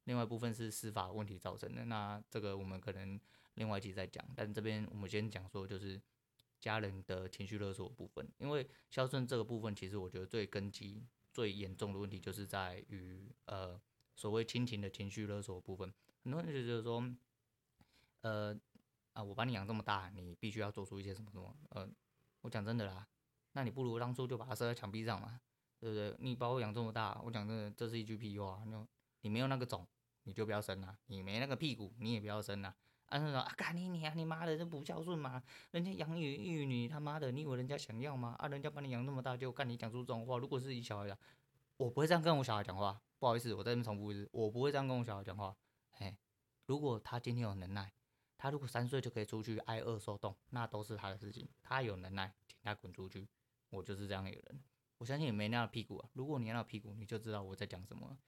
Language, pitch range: Chinese, 100-130 Hz